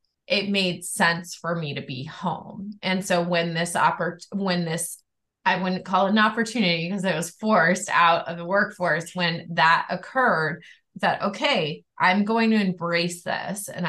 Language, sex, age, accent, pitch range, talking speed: English, female, 20-39, American, 180-230 Hz, 170 wpm